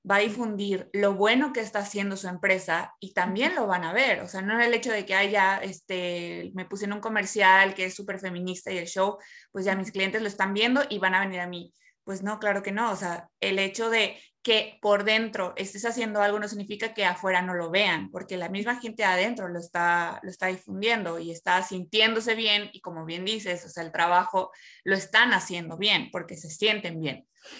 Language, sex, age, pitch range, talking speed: Spanish, female, 20-39, 185-225 Hz, 225 wpm